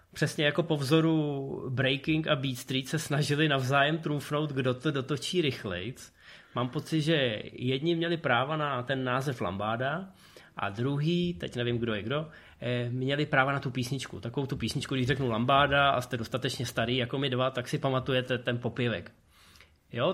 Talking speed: 170 wpm